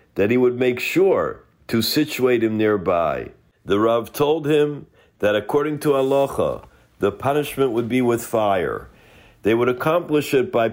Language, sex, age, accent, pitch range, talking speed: English, male, 50-69, American, 115-140 Hz, 155 wpm